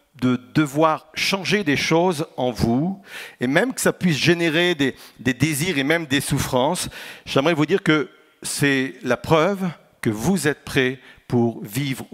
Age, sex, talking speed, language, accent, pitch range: 50-69, male, 165 wpm, French, French, 130-185 Hz